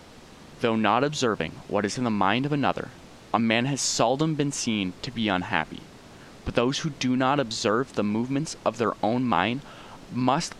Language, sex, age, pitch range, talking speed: English, male, 20-39, 85-120 Hz, 180 wpm